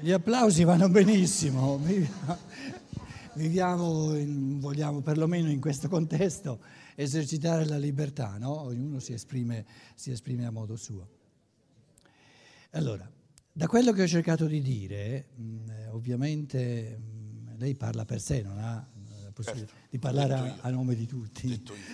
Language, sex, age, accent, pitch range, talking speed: Italian, male, 60-79, native, 115-160 Hz, 125 wpm